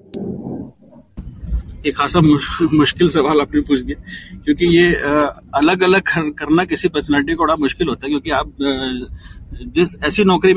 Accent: native